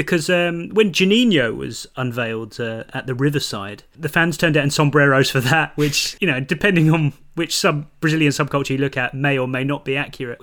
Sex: male